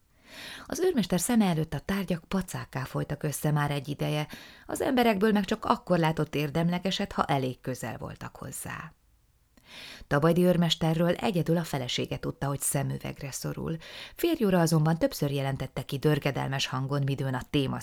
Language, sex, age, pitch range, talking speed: Hungarian, female, 30-49, 135-175 Hz, 145 wpm